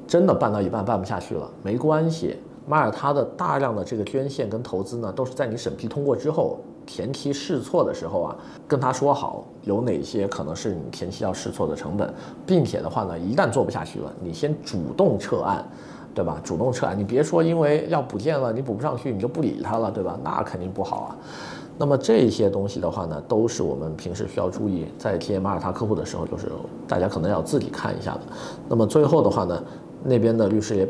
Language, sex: Chinese, male